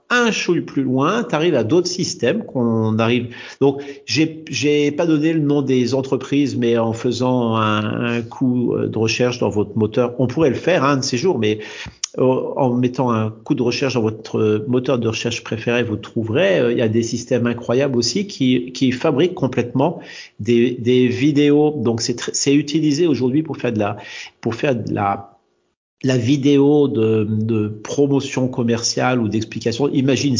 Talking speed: 180 wpm